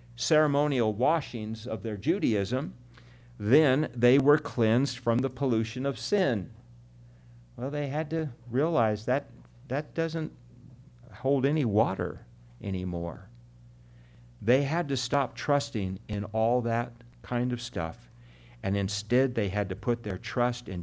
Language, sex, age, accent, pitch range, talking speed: English, male, 60-79, American, 95-125 Hz, 135 wpm